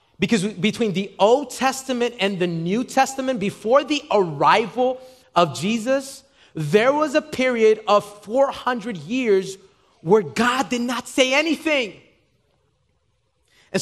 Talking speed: 120 wpm